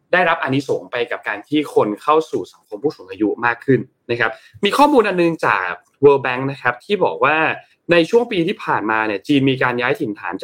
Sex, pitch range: male, 120-190 Hz